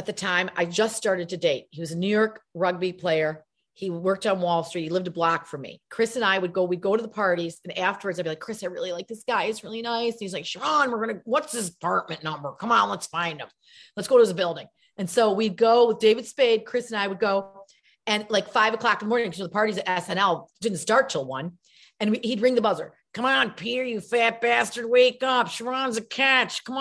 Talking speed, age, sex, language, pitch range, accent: 260 wpm, 40-59, female, English, 185-240 Hz, American